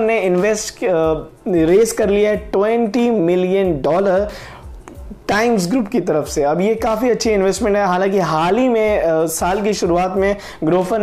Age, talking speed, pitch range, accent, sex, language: 20-39, 160 wpm, 180-220 Hz, native, male, Hindi